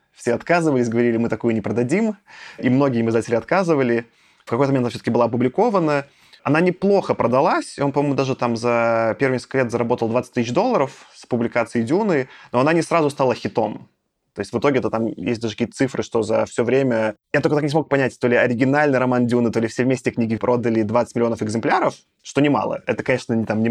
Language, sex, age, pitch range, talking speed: Russian, male, 20-39, 115-140 Hz, 205 wpm